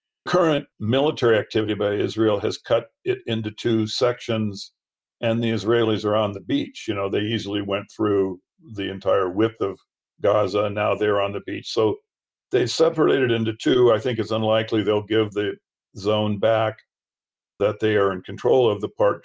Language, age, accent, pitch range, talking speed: English, 60-79, American, 105-120 Hz, 180 wpm